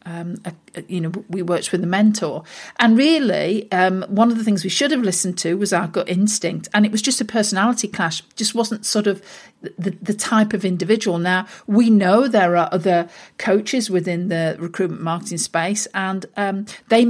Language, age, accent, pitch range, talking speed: English, 50-69, British, 185-240 Hz, 195 wpm